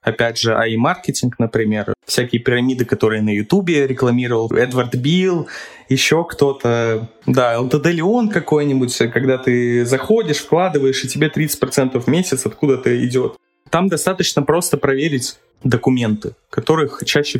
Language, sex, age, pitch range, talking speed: Russian, male, 20-39, 115-135 Hz, 125 wpm